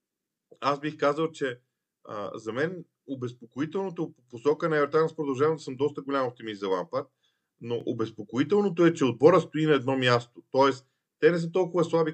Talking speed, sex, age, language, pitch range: 170 wpm, male, 40-59, Bulgarian, 135-165 Hz